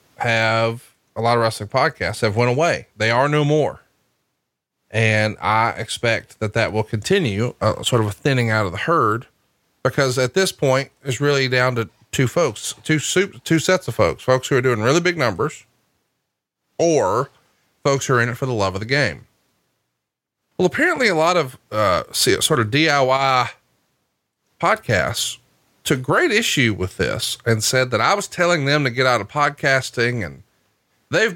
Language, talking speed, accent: English, 180 wpm, American